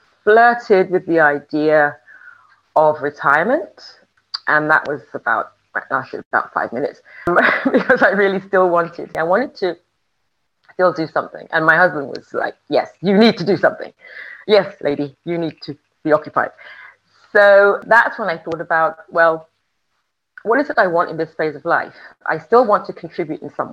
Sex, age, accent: female, 30-49, British